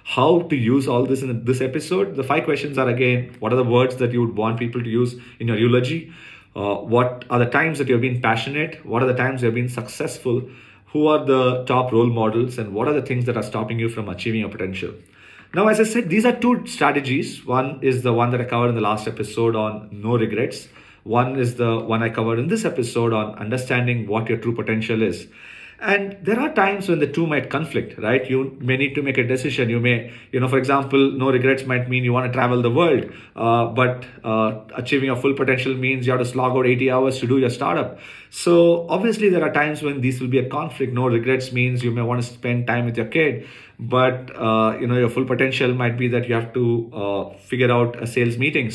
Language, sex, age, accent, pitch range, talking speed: English, male, 40-59, Indian, 115-135 Hz, 240 wpm